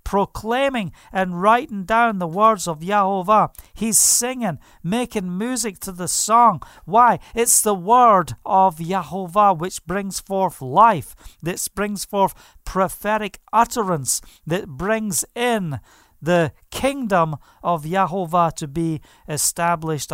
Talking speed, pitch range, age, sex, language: 120 wpm, 145-200 Hz, 50-69, male, English